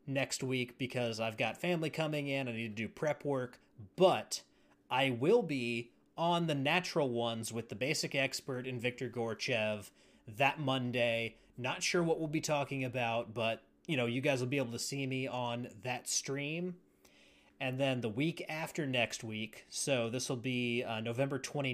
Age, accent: 30-49, American